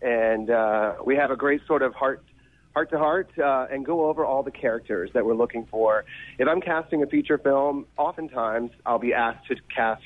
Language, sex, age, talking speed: English, male, 30-49, 195 wpm